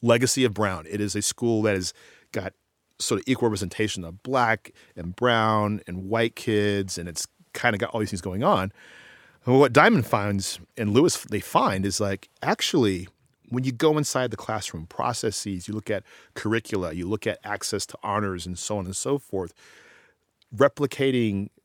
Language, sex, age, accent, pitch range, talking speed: English, male, 40-59, American, 95-115 Hz, 180 wpm